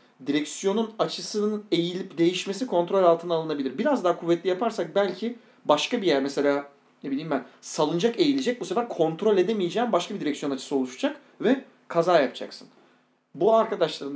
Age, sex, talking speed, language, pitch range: 40-59, male, 150 wpm, Turkish, 165-235 Hz